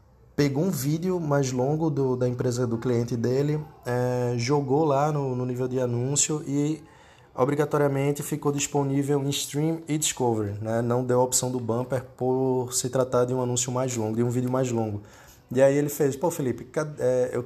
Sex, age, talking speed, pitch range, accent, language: male, 20-39, 185 wpm, 120-145 Hz, Brazilian, Portuguese